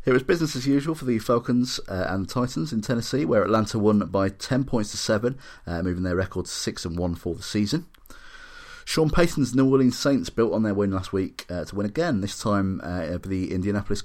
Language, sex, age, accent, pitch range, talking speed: English, male, 30-49, British, 90-115 Hz, 230 wpm